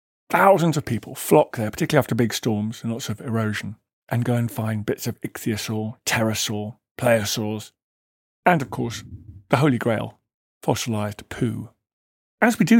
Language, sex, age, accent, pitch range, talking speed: English, male, 50-69, British, 110-150 Hz, 155 wpm